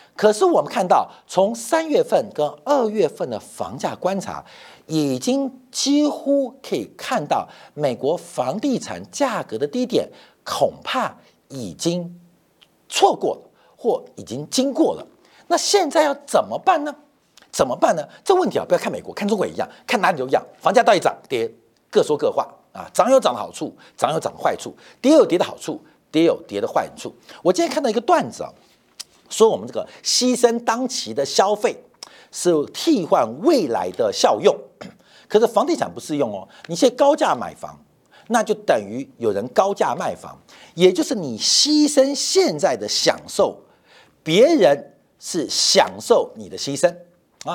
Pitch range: 195-315 Hz